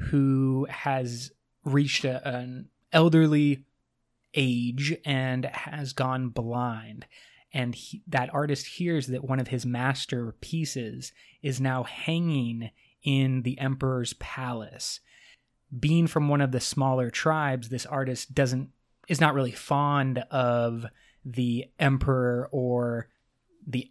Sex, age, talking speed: male, 20-39, 120 wpm